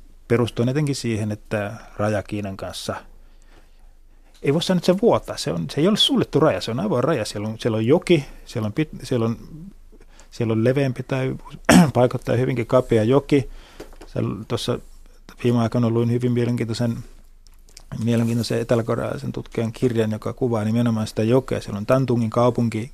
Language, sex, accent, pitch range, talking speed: Finnish, male, native, 110-120 Hz, 155 wpm